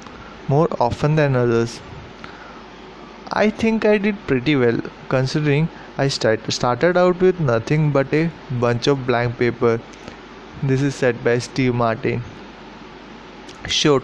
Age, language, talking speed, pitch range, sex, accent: 20-39, English, 130 wpm, 125-155 Hz, male, Indian